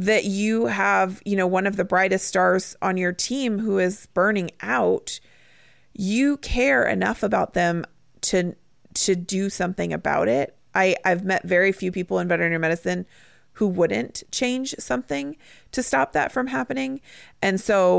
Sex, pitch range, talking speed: female, 175-225 Hz, 160 wpm